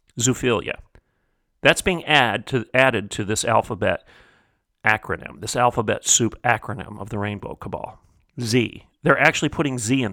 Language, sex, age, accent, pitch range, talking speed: English, male, 40-59, American, 105-140 Hz, 140 wpm